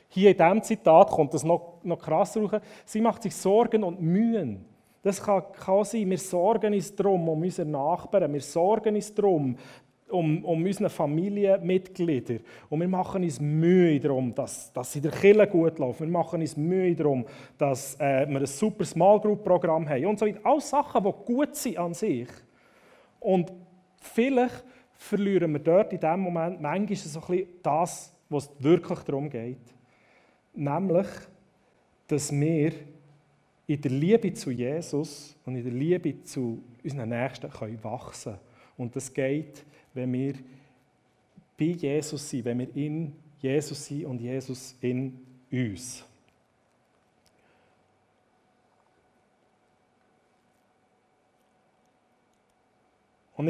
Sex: male